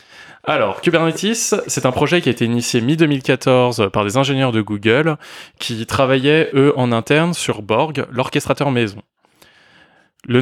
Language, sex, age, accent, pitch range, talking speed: French, male, 20-39, French, 115-140 Hz, 145 wpm